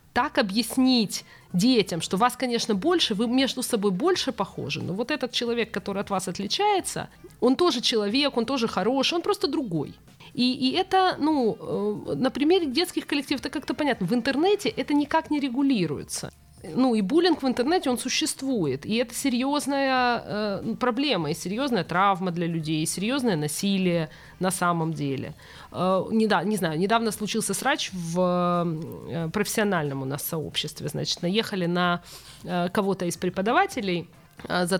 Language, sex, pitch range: Ukrainian, female, 185-260 Hz